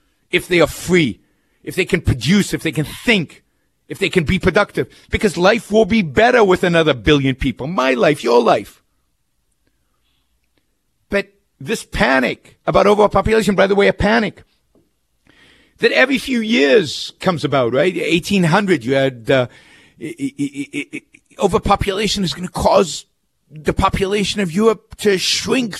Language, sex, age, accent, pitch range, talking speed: English, male, 50-69, American, 135-210 Hz, 145 wpm